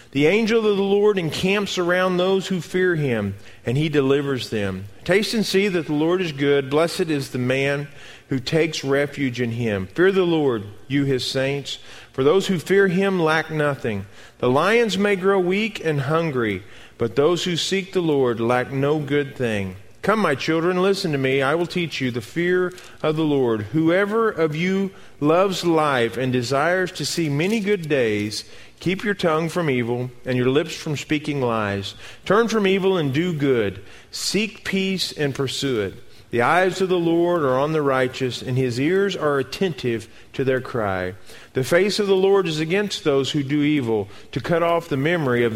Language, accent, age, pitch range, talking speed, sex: English, American, 40-59, 125-180 Hz, 190 wpm, male